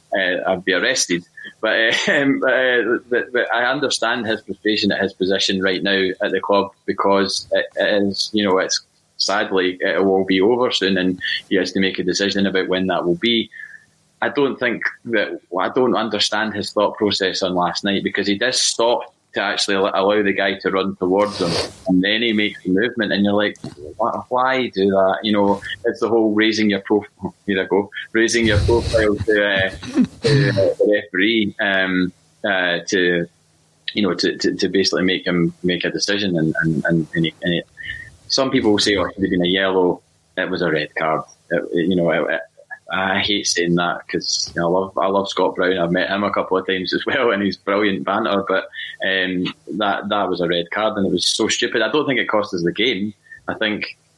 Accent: British